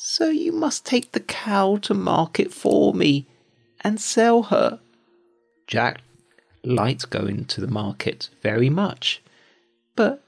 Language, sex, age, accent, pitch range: Chinese, male, 40-59, British, 115-190 Hz